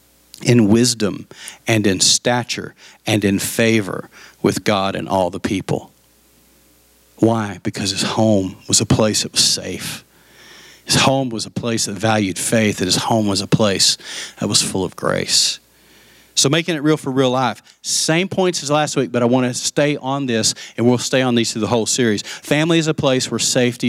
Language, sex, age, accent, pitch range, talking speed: English, male, 40-59, American, 120-165 Hz, 195 wpm